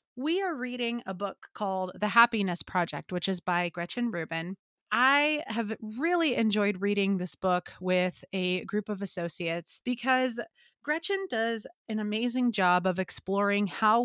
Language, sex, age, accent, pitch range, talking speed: English, female, 30-49, American, 185-235 Hz, 150 wpm